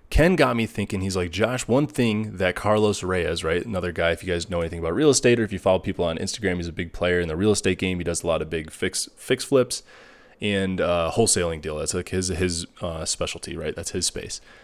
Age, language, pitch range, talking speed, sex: 20-39, English, 90-115 Hz, 255 wpm, male